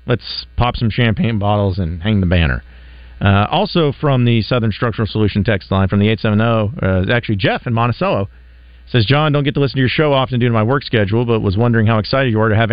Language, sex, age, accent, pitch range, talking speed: English, male, 40-59, American, 90-125 Hz, 235 wpm